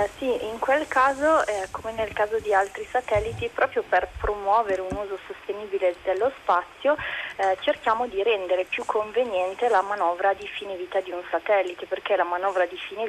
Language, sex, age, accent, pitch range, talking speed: Italian, female, 20-39, native, 175-225 Hz, 180 wpm